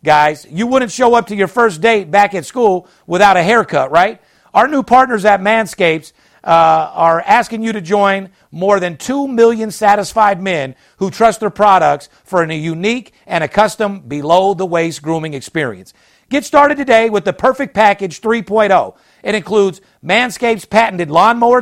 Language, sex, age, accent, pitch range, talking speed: English, male, 50-69, American, 175-230 Hz, 165 wpm